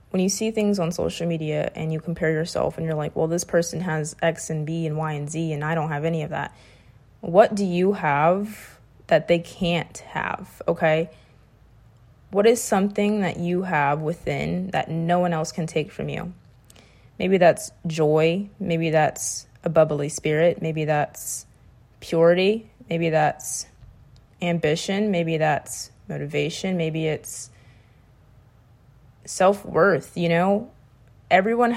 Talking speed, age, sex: 150 wpm, 20-39, female